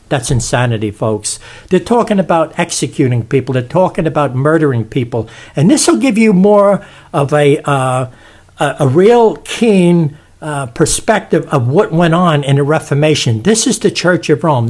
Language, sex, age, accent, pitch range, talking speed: English, male, 60-79, American, 135-190 Hz, 165 wpm